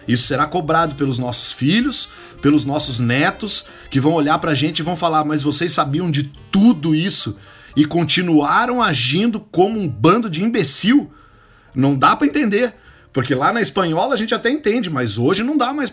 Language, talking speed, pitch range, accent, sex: Portuguese, 180 wpm, 150-200 Hz, Brazilian, male